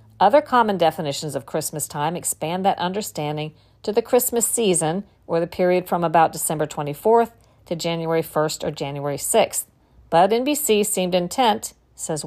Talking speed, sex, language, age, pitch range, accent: 150 wpm, female, English, 50-69, 155-195 Hz, American